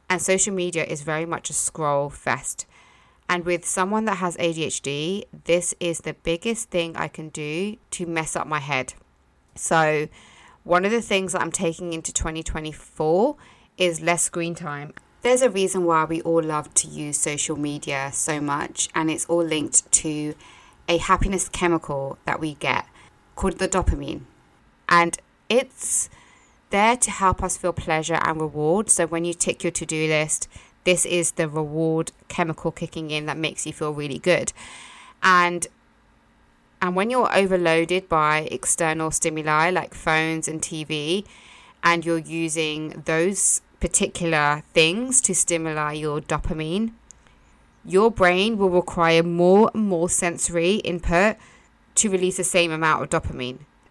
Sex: female